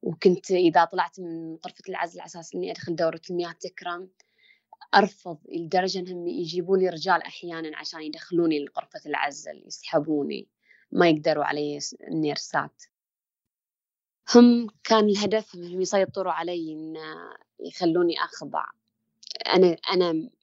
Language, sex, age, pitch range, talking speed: Arabic, female, 20-39, 170-215 Hz, 110 wpm